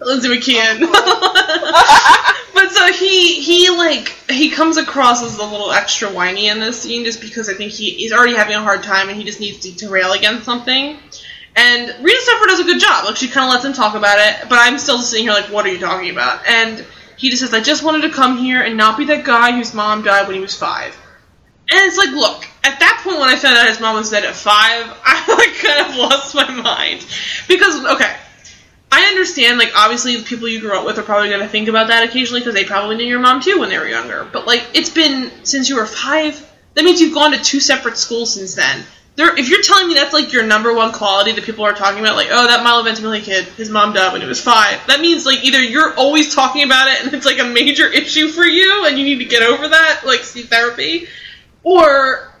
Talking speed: 245 wpm